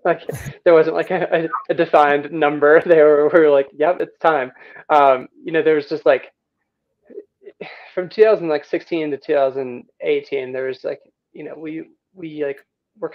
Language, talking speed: English, 165 wpm